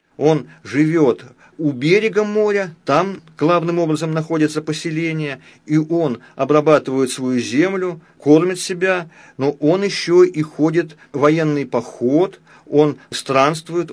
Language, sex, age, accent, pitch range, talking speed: Russian, male, 40-59, native, 140-175 Hz, 110 wpm